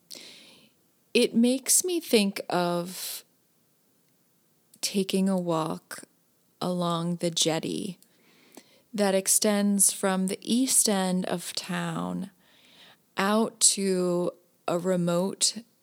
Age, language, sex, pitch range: 20-39, English, female, 175-205 Hz